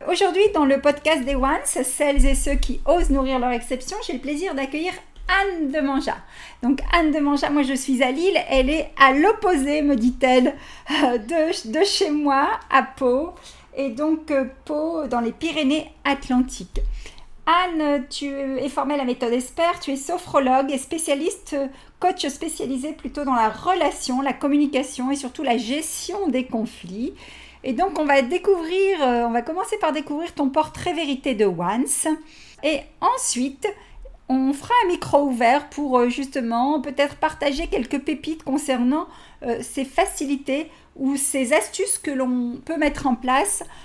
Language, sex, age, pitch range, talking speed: French, female, 50-69, 255-315 Hz, 160 wpm